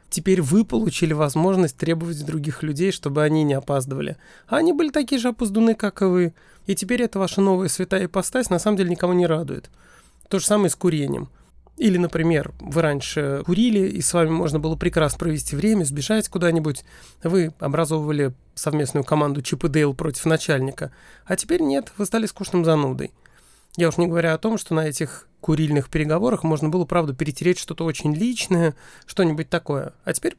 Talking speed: 180 wpm